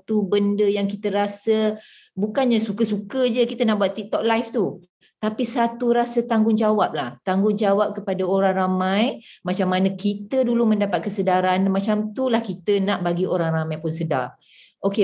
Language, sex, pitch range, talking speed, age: Malay, female, 180-225 Hz, 155 wpm, 20-39